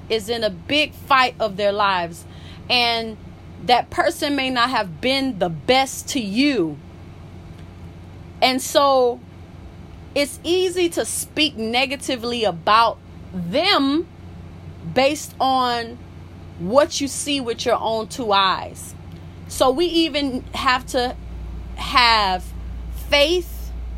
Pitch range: 220-280 Hz